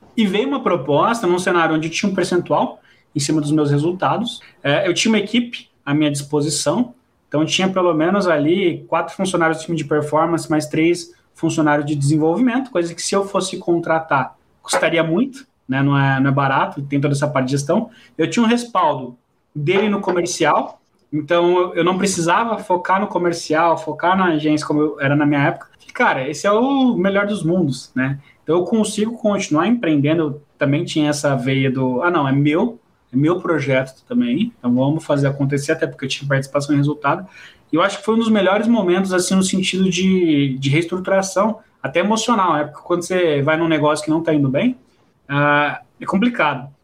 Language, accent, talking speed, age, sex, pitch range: Portuguese, Brazilian, 190 wpm, 20-39, male, 150-195 Hz